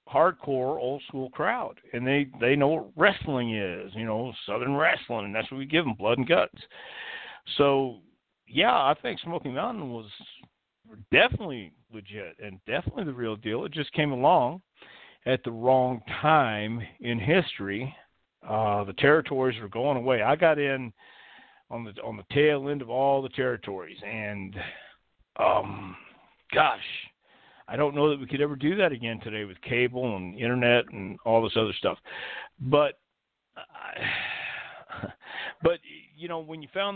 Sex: male